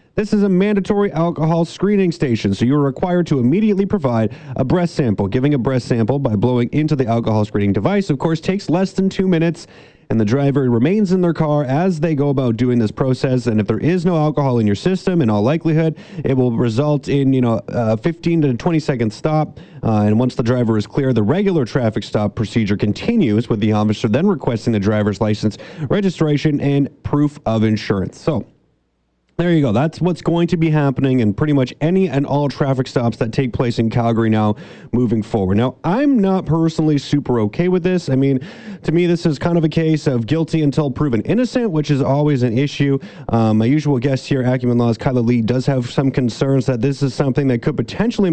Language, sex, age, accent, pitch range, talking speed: English, male, 30-49, American, 120-160 Hz, 215 wpm